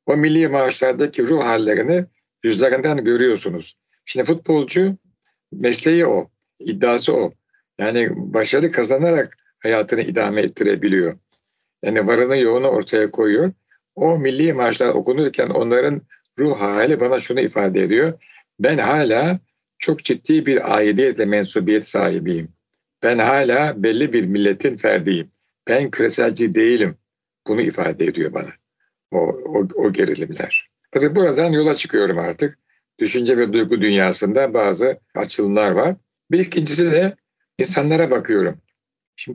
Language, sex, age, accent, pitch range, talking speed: Turkish, male, 60-79, native, 125-195 Hz, 120 wpm